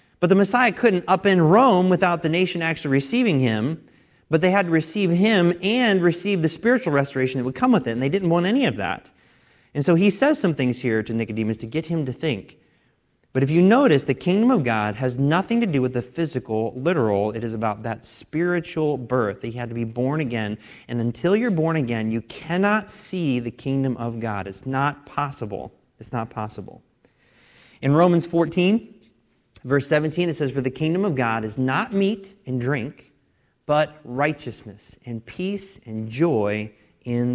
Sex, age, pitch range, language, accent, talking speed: male, 30-49, 115-175 Hz, English, American, 195 wpm